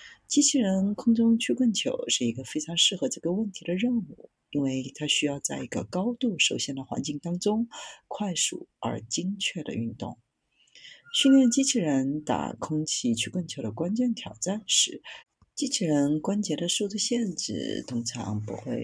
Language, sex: Chinese, female